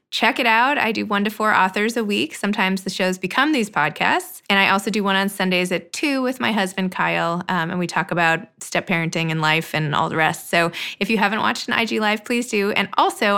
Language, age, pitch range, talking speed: English, 20-39, 175-215 Hz, 240 wpm